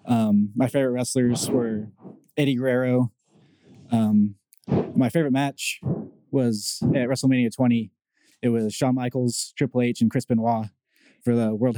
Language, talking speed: English, 140 wpm